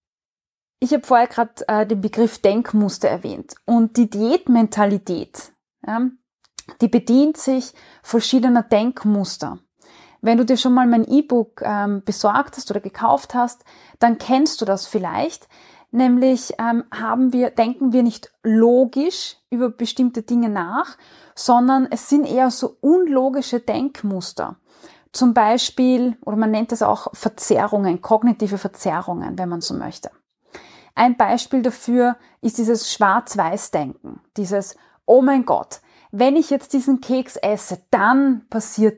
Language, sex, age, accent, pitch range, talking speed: German, female, 20-39, German, 210-255 Hz, 130 wpm